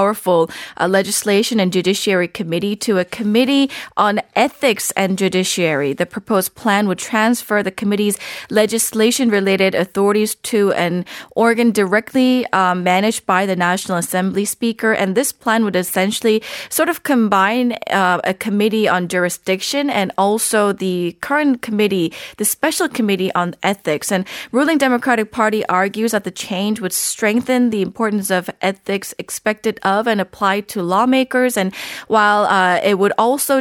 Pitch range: 185-225 Hz